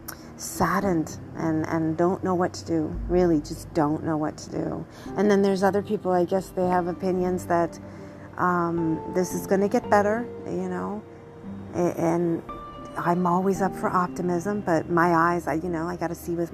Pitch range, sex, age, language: 160-185 Hz, female, 40-59, English